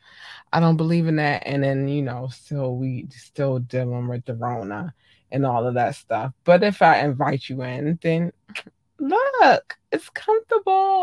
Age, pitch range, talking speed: 20-39, 135-175 Hz, 170 wpm